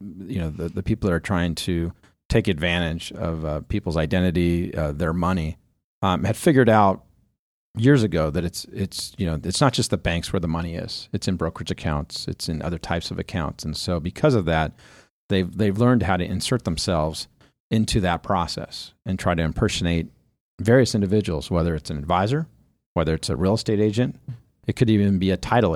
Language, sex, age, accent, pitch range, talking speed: English, male, 40-59, American, 85-105 Hz, 200 wpm